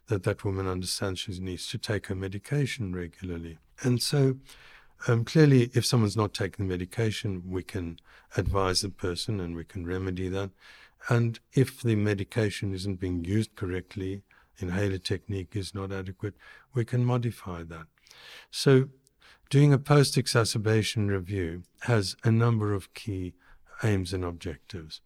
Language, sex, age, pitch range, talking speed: English, male, 60-79, 95-115 Hz, 145 wpm